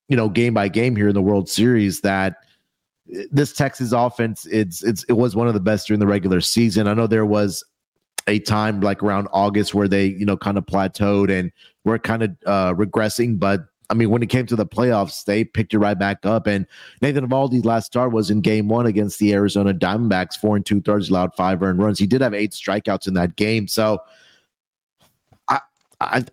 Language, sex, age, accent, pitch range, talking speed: English, male, 30-49, American, 100-120 Hz, 215 wpm